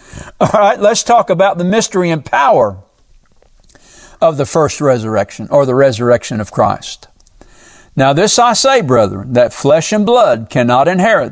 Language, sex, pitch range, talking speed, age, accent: English, male, 145-225 Hz, 155 wpm, 60-79, American